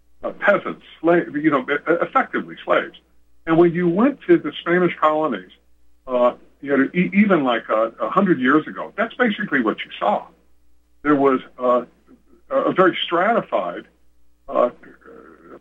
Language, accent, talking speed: English, American, 125 wpm